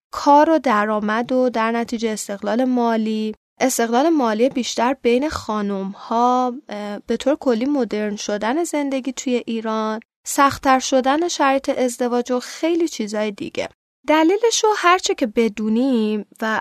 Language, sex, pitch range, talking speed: Persian, female, 215-280 Hz, 125 wpm